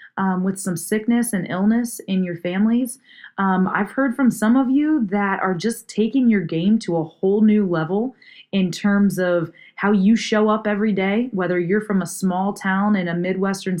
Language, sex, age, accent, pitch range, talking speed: English, female, 20-39, American, 185-225 Hz, 195 wpm